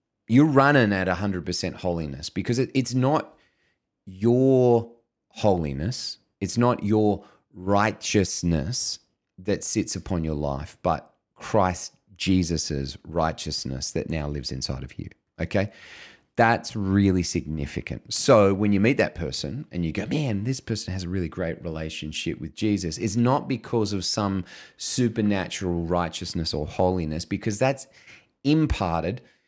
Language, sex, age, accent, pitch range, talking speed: English, male, 30-49, Australian, 90-125 Hz, 135 wpm